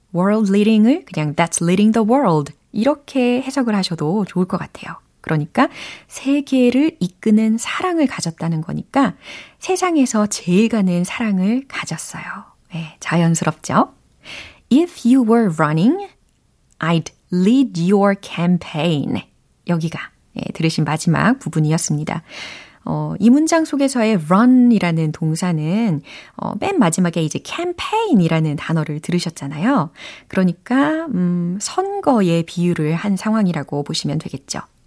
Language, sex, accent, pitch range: Korean, female, native, 170-260 Hz